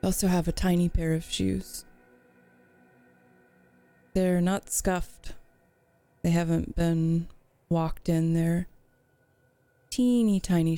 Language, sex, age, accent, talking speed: English, female, 20-39, American, 105 wpm